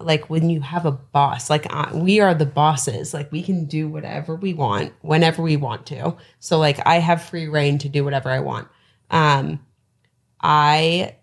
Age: 30-49